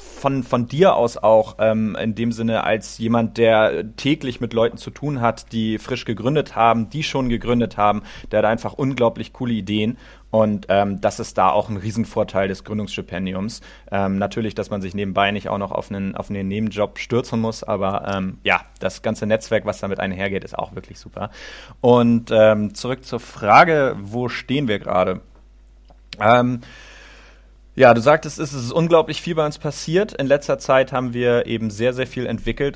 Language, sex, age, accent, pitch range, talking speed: German, male, 30-49, German, 105-120 Hz, 190 wpm